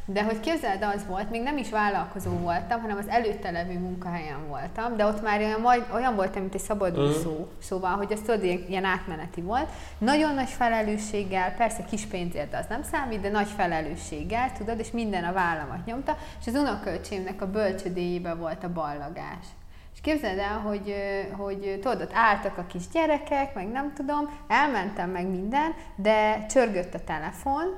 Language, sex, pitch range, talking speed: Hungarian, female, 185-240 Hz, 170 wpm